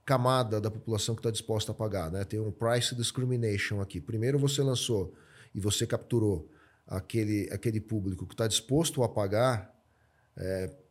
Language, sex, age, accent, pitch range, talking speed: Portuguese, male, 40-59, Brazilian, 100-130 Hz, 160 wpm